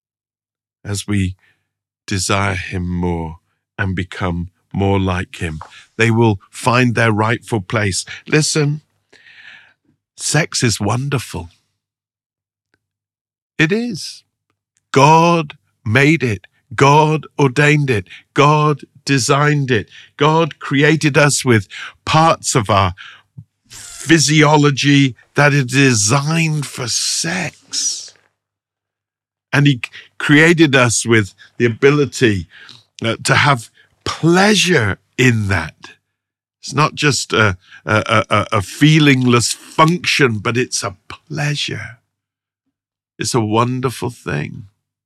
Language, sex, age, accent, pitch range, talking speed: English, male, 50-69, British, 105-145 Hz, 100 wpm